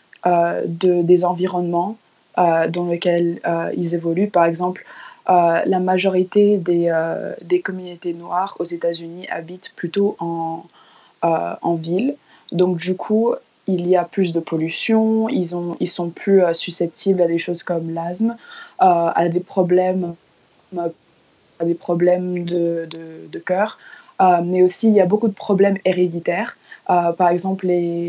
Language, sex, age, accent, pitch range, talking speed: French, female, 20-39, French, 165-185 Hz, 160 wpm